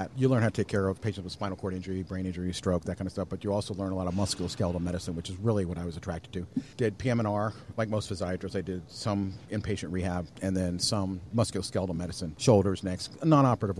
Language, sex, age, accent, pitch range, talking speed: English, male, 40-59, American, 95-115 Hz, 235 wpm